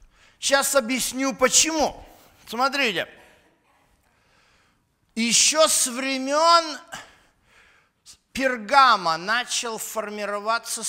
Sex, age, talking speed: male, 50-69, 55 wpm